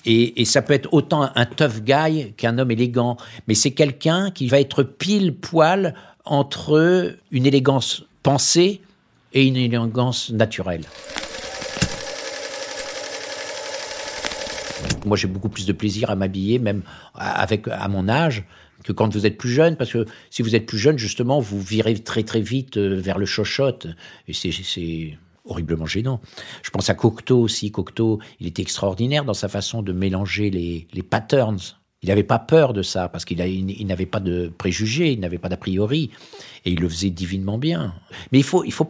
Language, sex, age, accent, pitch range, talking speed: French, male, 50-69, French, 100-140 Hz, 180 wpm